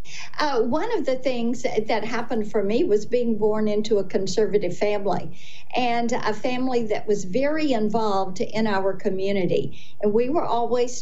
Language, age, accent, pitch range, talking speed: English, 50-69, American, 205-245 Hz, 165 wpm